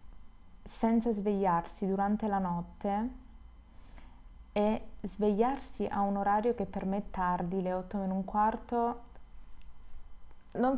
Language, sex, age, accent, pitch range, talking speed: Italian, female, 20-39, native, 175-215 Hz, 115 wpm